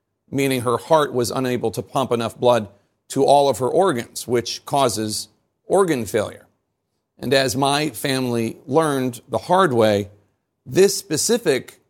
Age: 40-59